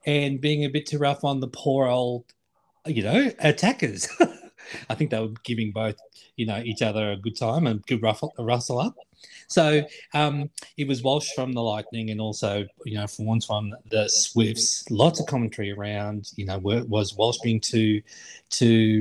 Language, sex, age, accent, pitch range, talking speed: English, male, 30-49, Australian, 115-150 Hz, 185 wpm